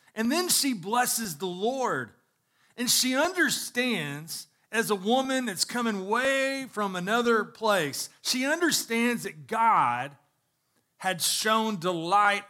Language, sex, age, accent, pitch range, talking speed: English, male, 40-59, American, 160-220 Hz, 120 wpm